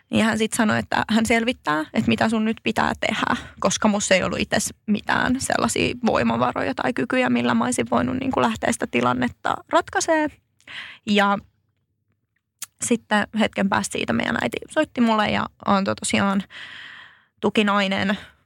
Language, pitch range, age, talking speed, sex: Finnish, 185-225 Hz, 20-39, 150 wpm, female